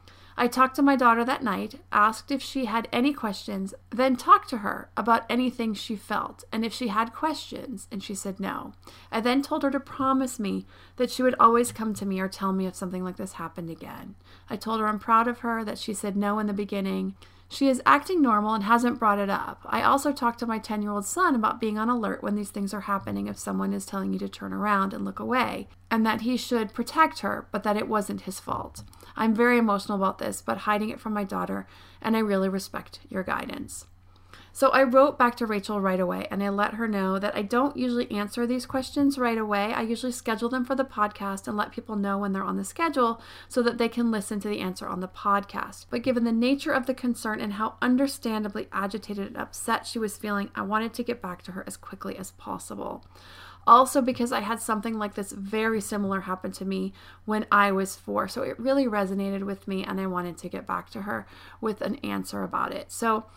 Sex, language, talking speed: female, English, 230 wpm